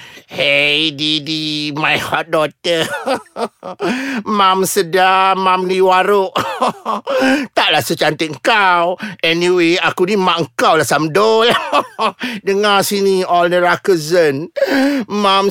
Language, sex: Malay, male